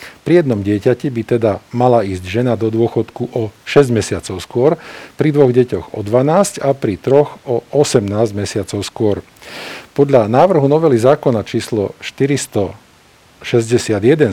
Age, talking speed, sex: 50-69, 140 wpm, male